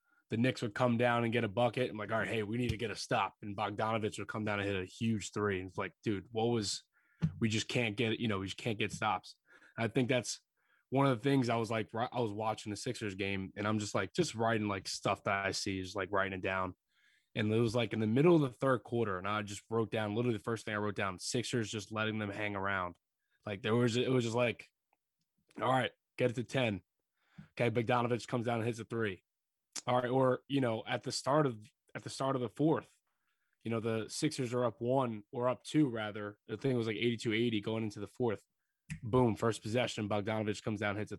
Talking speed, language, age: 260 wpm, English, 20-39